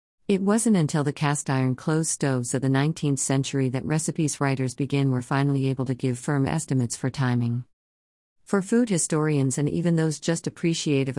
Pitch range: 130-160 Hz